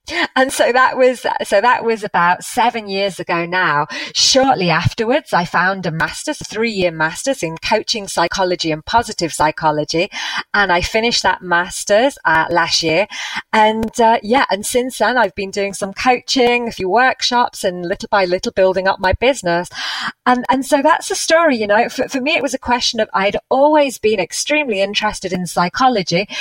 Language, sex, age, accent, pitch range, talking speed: English, female, 30-49, British, 175-230 Hz, 180 wpm